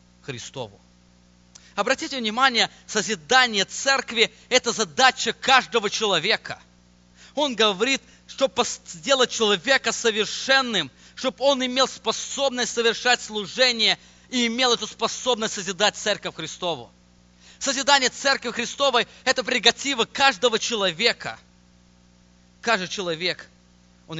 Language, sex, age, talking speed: English, male, 20-39, 95 wpm